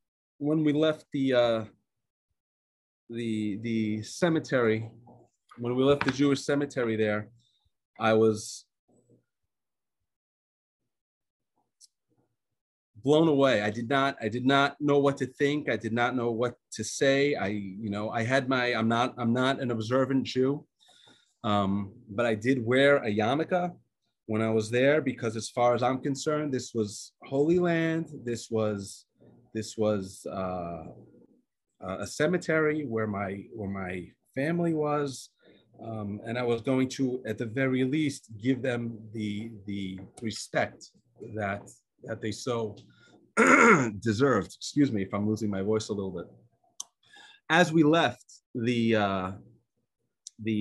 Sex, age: male, 30-49